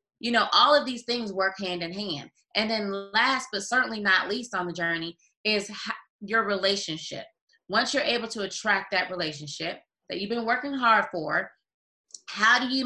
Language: English